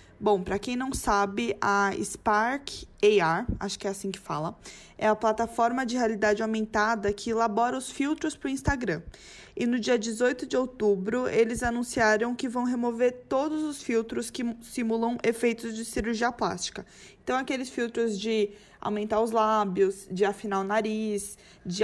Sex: female